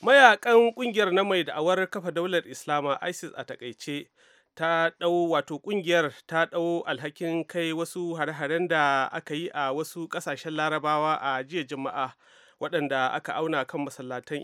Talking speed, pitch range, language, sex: 135 wpm, 150-185 Hz, English, male